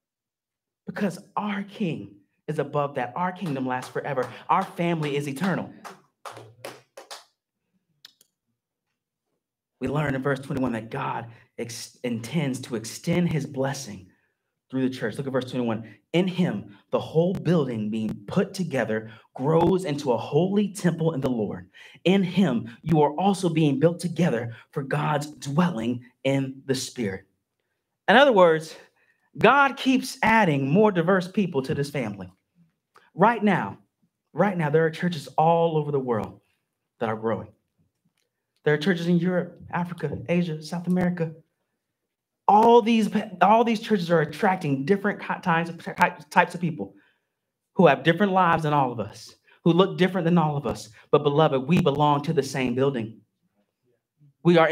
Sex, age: male, 30-49